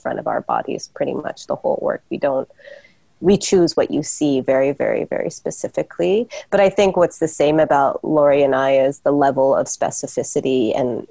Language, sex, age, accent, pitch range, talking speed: English, female, 30-49, American, 145-175 Hz, 195 wpm